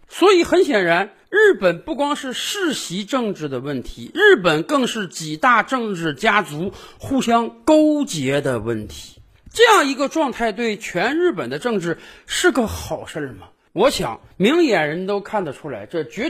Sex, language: male, Chinese